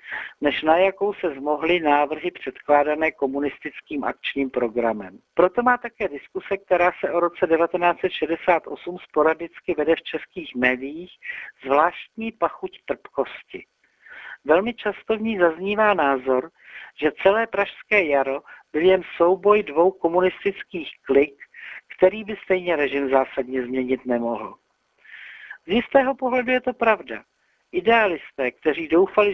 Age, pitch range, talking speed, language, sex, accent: 60-79, 150-205 Hz, 120 wpm, Czech, male, native